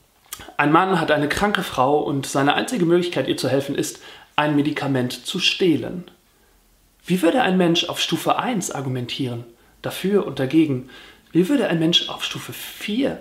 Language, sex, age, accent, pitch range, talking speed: German, male, 40-59, German, 140-185 Hz, 165 wpm